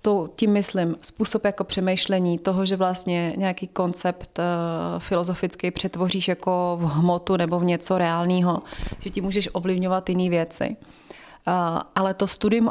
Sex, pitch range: female, 170-190 Hz